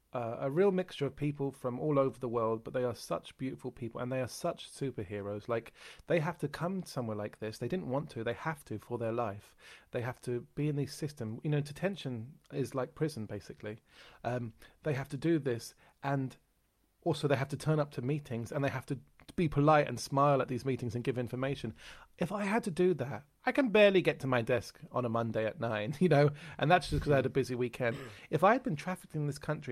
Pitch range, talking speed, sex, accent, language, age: 115-145 Hz, 240 wpm, male, British, English, 30-49